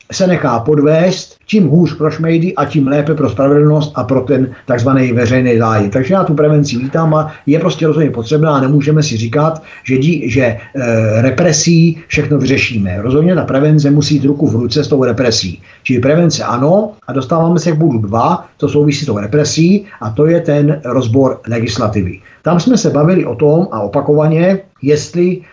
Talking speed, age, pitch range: 185 wpm, 50-69, 125-160 Hz